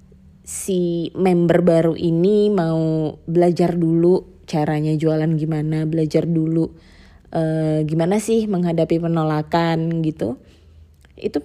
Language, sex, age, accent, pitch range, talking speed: Indonesian, female, 20-39, native, 150-180 Hz, 100 wpm